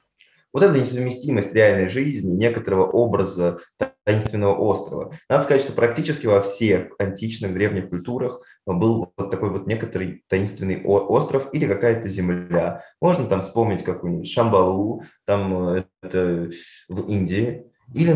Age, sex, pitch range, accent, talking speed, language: 20-39, male, 95-125 Hz, native, 120 wpm, Russian